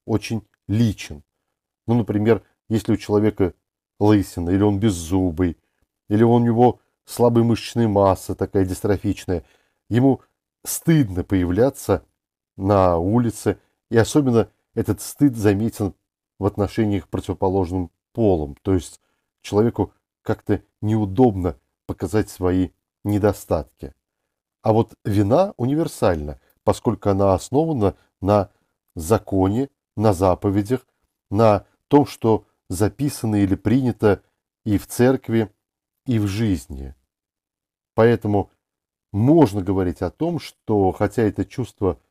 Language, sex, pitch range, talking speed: Russian, male, 95-115 Hz, 105 wpm